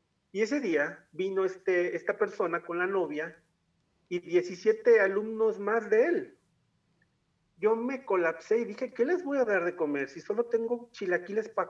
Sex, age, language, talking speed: male, 40-59, Spanish, 170 wpm